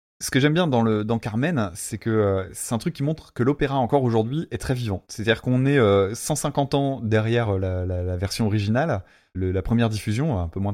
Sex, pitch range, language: male, 100-130 Hz, French